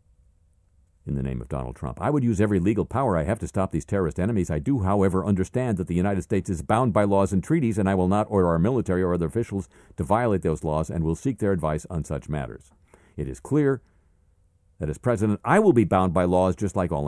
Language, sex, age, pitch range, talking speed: English, male, 50-69, 75-95 Hz, 245 wpm